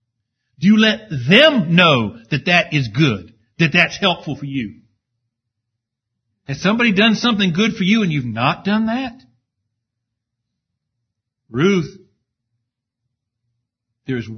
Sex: male